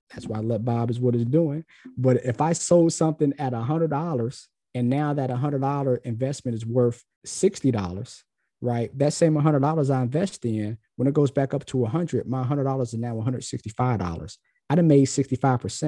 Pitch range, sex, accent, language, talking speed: 120-145 Hz, male, American, English, 195 wpm